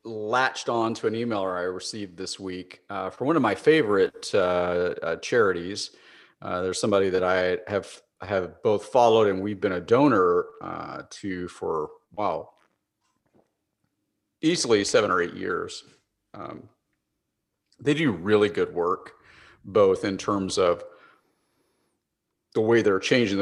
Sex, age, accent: male, 40-59, American